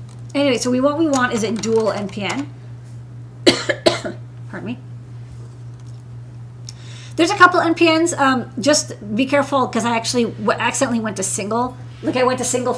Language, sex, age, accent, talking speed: English, female, 40-59, American, 140 wpm